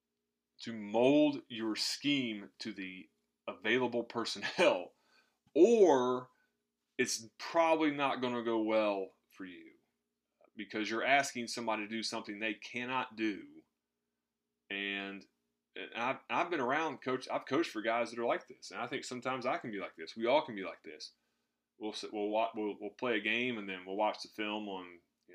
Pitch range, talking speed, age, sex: 100-135 Hz, 175 wpm, 30-49, male